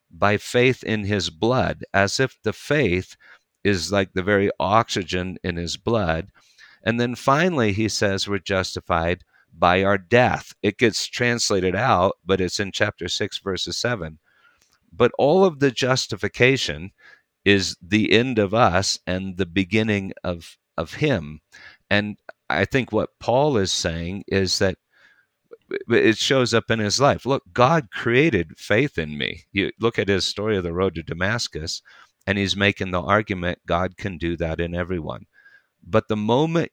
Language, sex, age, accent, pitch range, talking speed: English, male, 50-69, American, 95-115 Hz, 160 wpm